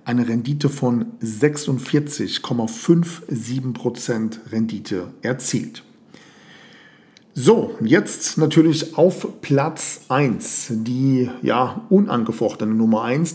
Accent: German